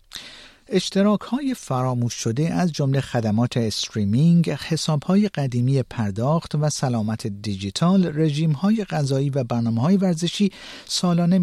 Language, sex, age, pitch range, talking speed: Persian, male, 50-69, 115-160 Hz, 105 wpm